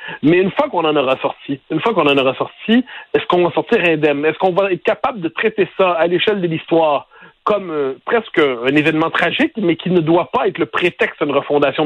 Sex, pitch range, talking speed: male, 145-200 Hz, 235 wpm